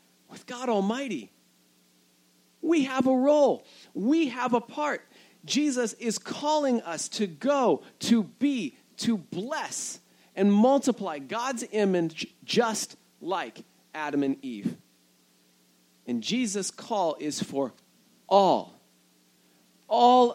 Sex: male